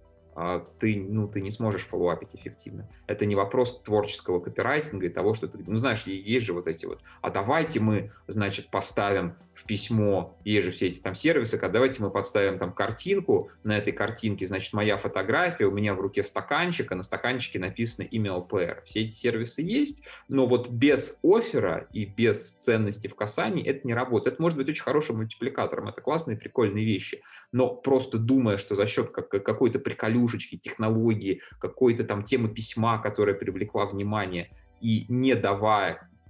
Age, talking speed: 20-39, 170 wpm